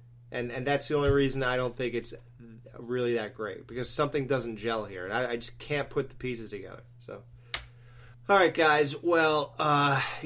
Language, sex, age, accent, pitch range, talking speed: English, male, 20-39, American, 120-145 Hz, 185 wpm